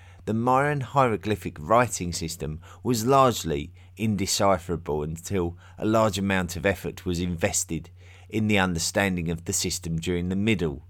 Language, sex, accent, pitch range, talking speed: English, male, British, 90-105 Hz, 140 wpm